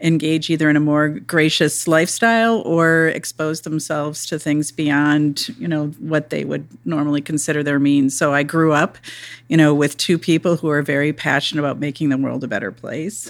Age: 40-59